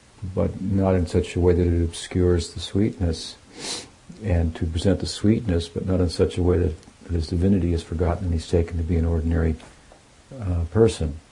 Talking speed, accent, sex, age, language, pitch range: 195 wpm, American, male, 60-79, English, 85-105 Hz